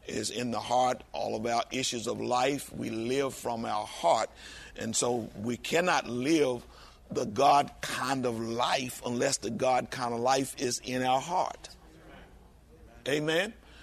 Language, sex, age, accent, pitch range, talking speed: English, male, 50-69, American, 120-140 Hz, 155 wpm